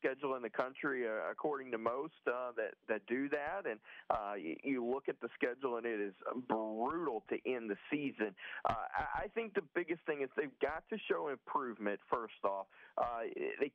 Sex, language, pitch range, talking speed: male, English, 120-160 Hz, 200 wpm